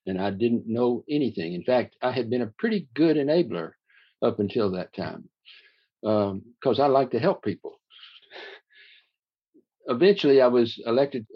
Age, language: 60-79, English